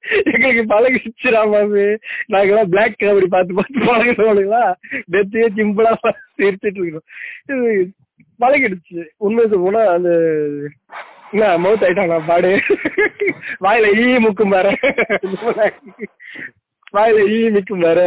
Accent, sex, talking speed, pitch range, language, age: native, male, 90 wpm, 165-215 Hz, Tamil, 20-39